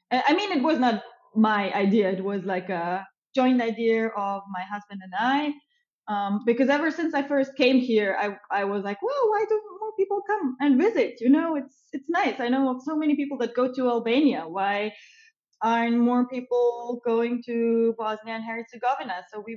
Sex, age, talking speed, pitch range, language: female, 20-39, 195 wpm, 200-260 Hz, English